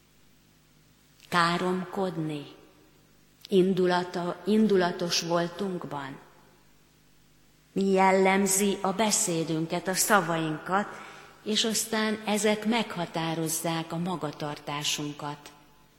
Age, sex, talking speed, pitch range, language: 30-49, female, 55 wpm, 160-200 Hz, Hungarian